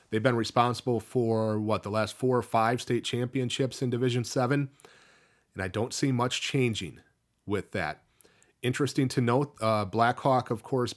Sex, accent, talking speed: male, American, 165 wpm